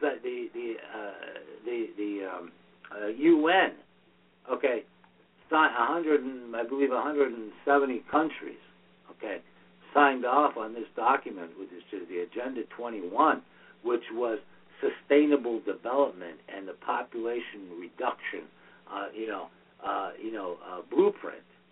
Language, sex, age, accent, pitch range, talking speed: English, male, 60-79, American, 120-165 Hz, 115 wpm